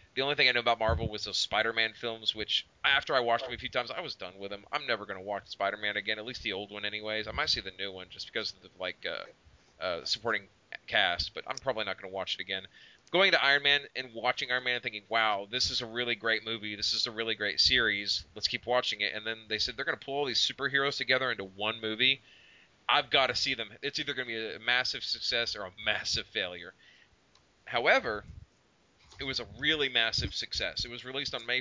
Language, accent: English, American